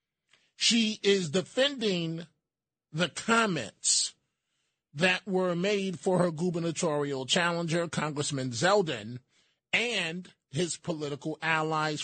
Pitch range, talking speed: 155-195 Hz, 90 wpm